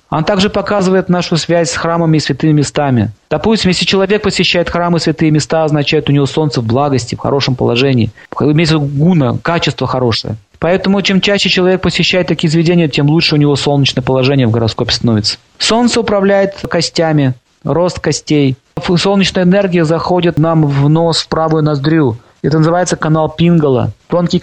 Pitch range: 145-180 Hz